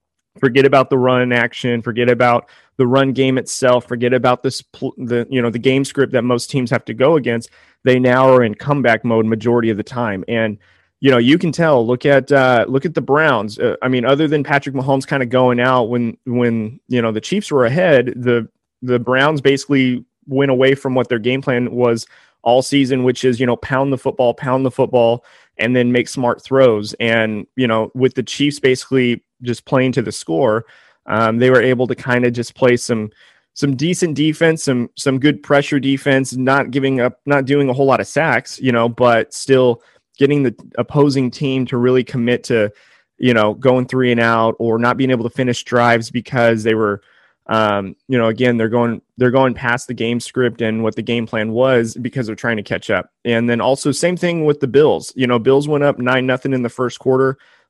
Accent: American